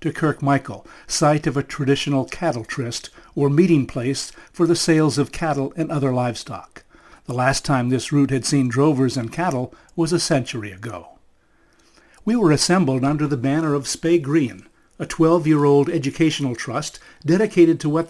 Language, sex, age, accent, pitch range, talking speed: English, male, 60-79, American, 135-165 Hz, 160 wpm